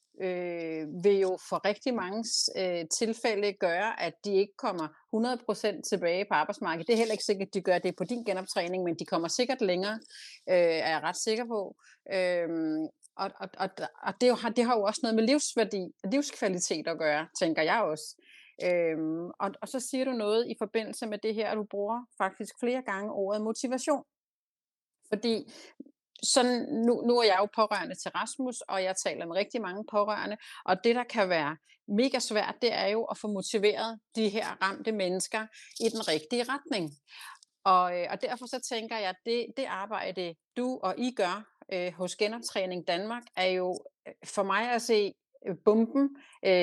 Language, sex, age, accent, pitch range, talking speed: Danish, female, 30-49, native, 185-235 Hz, 180 wpm